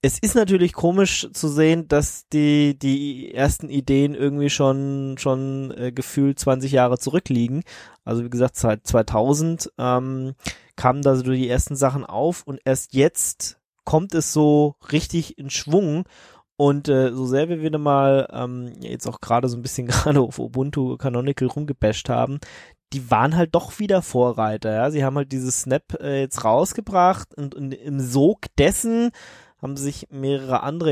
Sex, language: male, German